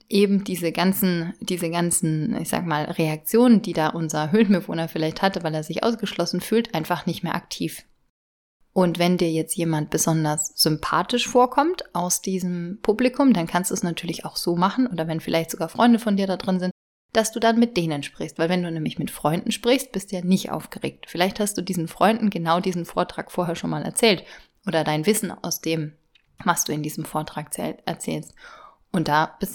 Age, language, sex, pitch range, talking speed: 30-49, German, female, 165-225 Hz, 195 wpm